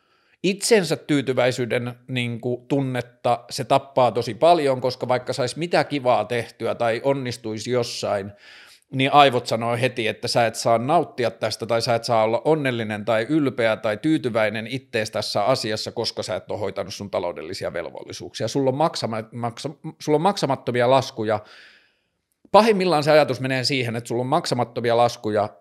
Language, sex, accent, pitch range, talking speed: Finnish, male, native, 115-150 Hz, 145 wpm